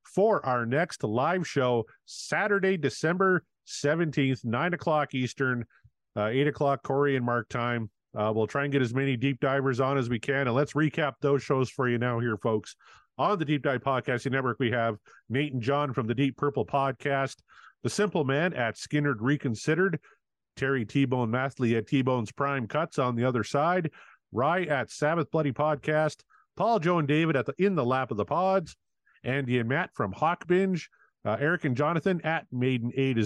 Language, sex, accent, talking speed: English, male, American, 190 wpm